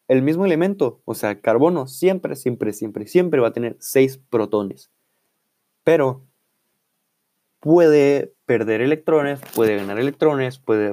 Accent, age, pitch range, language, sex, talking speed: Mexican, 20-39, 110-140 Hz, Spanish, male, 125 wpm